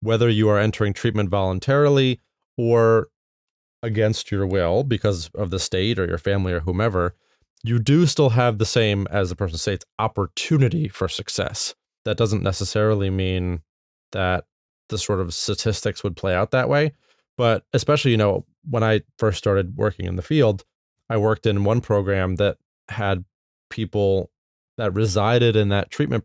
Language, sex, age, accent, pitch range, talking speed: English, male, 20-39, American, 95-120 Hz, 160 wpm